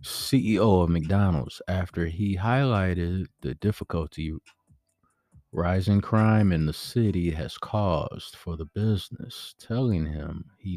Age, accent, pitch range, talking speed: 30-49, American, 90-120 Hz, 115 wpm